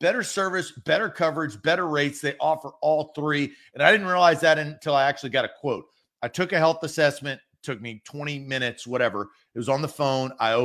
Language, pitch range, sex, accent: English, 135-185 Hz, male, American